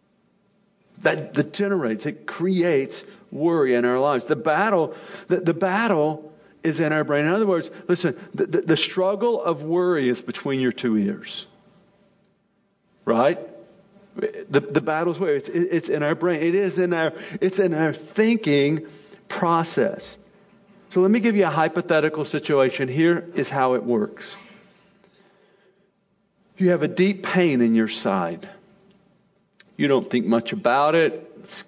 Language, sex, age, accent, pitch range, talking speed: English, male, 50-69, American, 135-200 Hz, 150 wpm